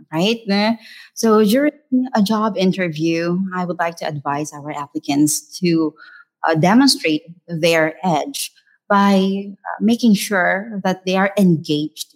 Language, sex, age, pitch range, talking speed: English, female, 30-49, 160-205 Hz, 125 wpm